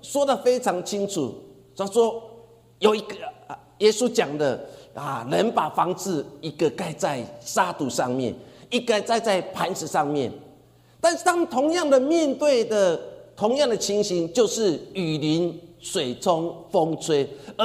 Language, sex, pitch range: Chinese, male, 185-275 Hz